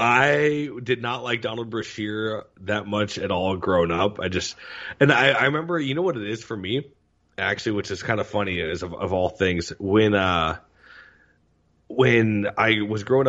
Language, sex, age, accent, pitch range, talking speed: English, male, 30-49, American, 90-120 Hz, 190 wpm